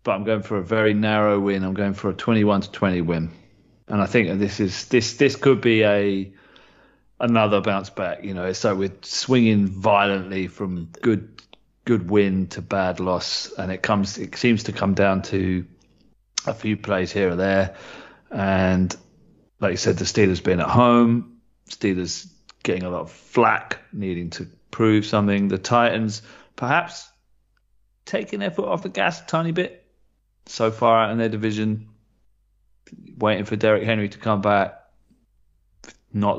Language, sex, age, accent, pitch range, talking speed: English, male, 30-49, British, 95-110 Hz, 170 wpm